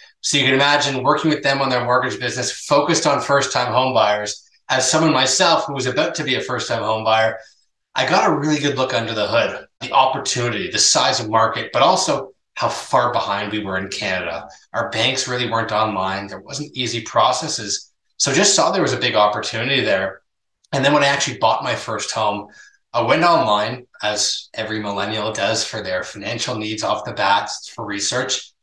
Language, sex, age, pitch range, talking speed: English, male, 20-39, 105-135 Hz, 200 wpm